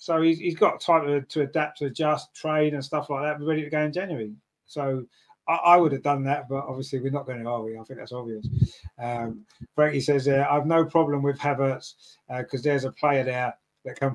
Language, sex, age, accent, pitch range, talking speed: English, male, 30-49, British, 125-145 Hz, 240 wpm